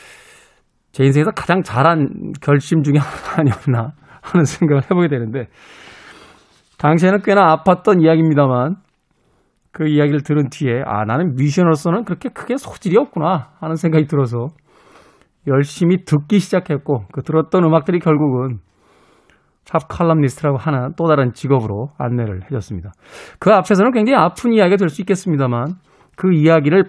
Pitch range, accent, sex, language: 125-175 Hz, native, male, Korean